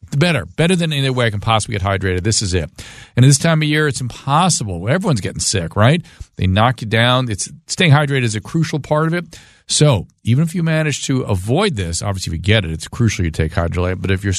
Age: 40-59